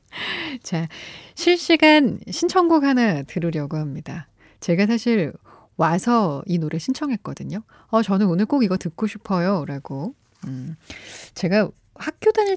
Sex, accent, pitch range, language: female, native, 165-245 Hz, Korean